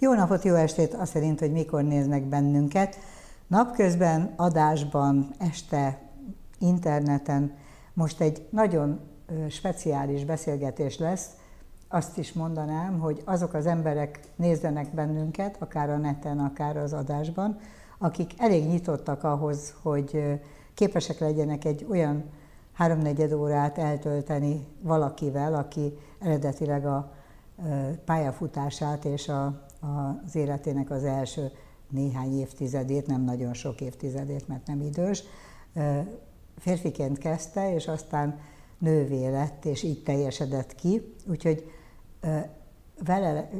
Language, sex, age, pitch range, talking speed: Hungarian, female, 60-79, 145-165 Hz, 110 wpm